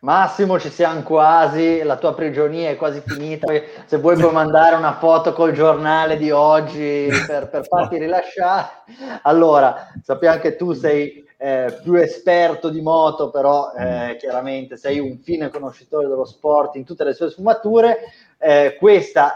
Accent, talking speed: native, 155 wpm